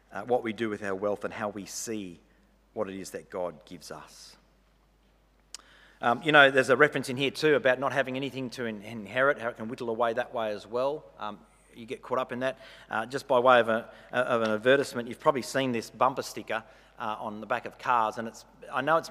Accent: Australian